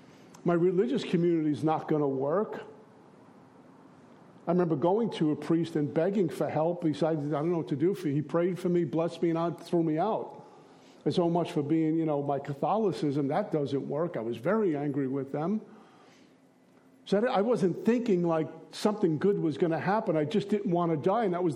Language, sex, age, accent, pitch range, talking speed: English, male, 50-69, American, 155-185 Hz, 210 wpm